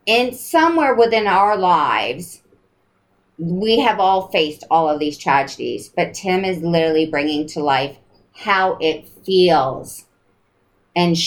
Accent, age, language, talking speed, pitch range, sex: American, 40-59, English, 130 wpm, 145-185 Hz, female